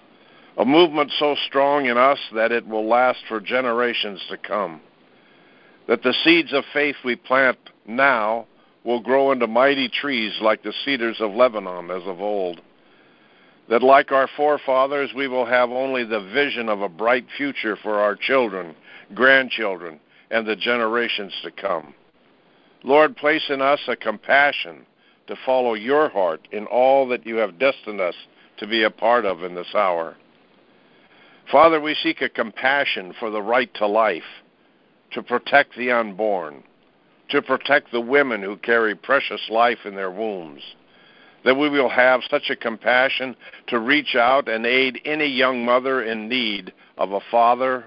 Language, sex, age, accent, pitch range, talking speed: English, male, 60-79, American, 110-135 Hz, 160 wpm